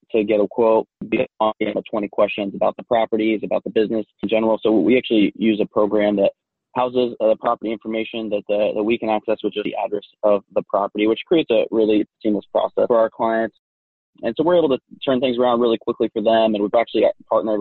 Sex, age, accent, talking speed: male, 20-39, American, 225 wpm